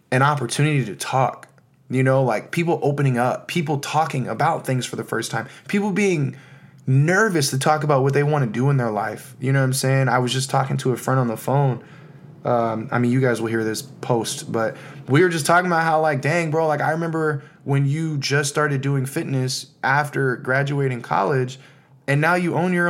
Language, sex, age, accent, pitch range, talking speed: English, male, 20-39, American, 125-155 Hz, 220 wpm